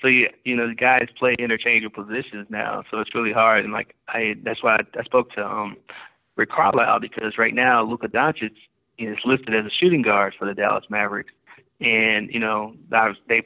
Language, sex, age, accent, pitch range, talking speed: English, male, 20-39, American, 110-120 Hz, 210 wpm